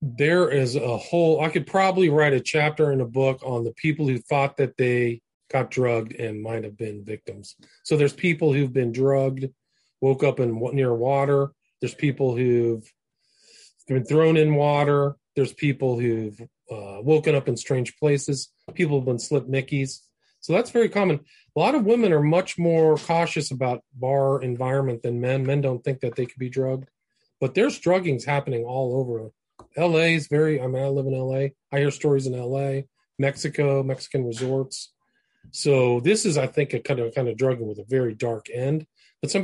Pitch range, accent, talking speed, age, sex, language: 125-150 Hz, American, 190 wpm, 40-59, male, English